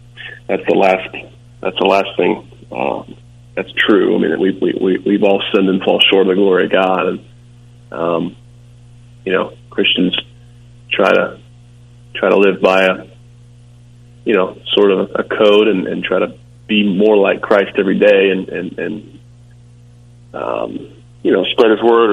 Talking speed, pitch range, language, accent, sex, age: 170 wpm, 100-120 Hz, English, American, male, 30-49